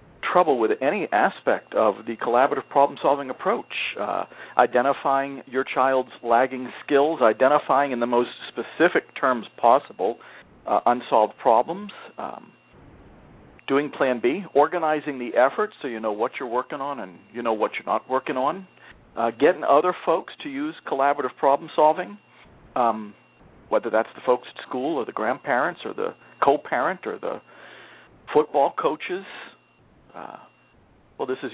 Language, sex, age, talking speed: English, male, 50-69, 150 wpm